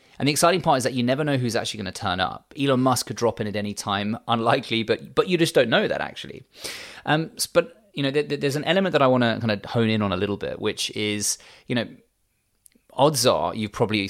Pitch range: 100-125 Hz